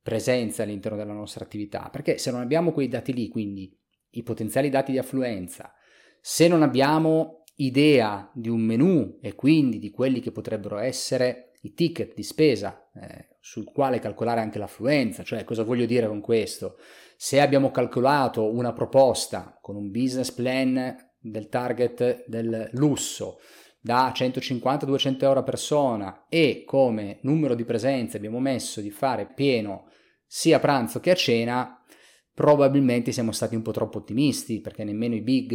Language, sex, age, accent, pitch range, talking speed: Italian, male, 30-49, native, 110-135 Hz, 155 wpm